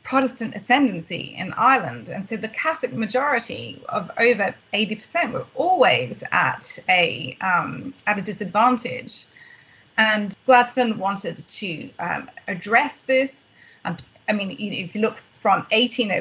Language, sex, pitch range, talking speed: English, female, 205-250 Hz, 125 wpm